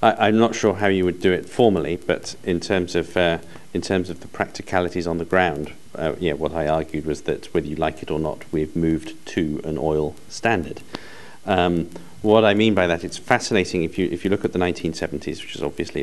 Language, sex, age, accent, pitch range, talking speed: English, male, 40-59, British, 85-100 Hz, 230 wpm